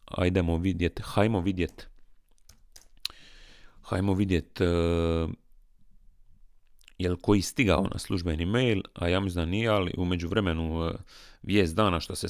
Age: 30-49